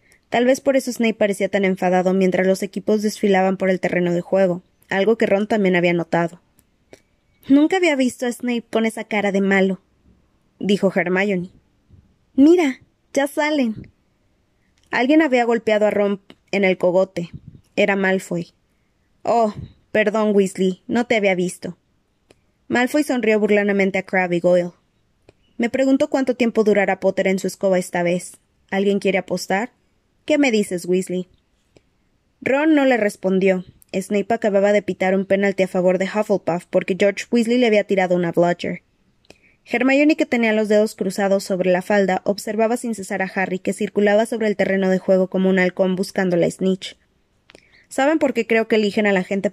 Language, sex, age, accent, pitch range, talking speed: Spanish, female, 20-39, Mexican, 185-220 Hz, 165 wpm